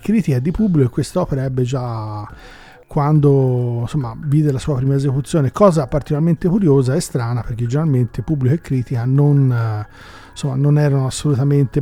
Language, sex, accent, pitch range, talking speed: Italian, male, native, 130-155 Hz, 135 wpm